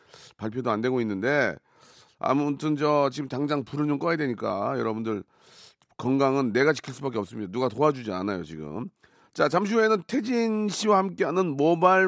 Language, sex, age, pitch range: Korean, male, 40-59, 130-180 Hz